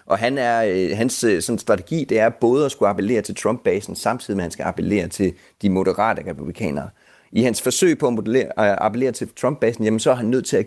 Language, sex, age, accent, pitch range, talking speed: Danish, male, 30-49, native, 100-140 Hz, 225 wpm